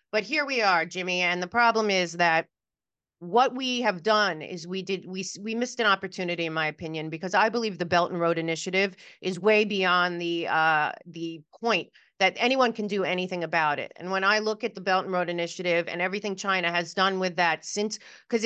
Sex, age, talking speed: female, 30-49, 215 wpm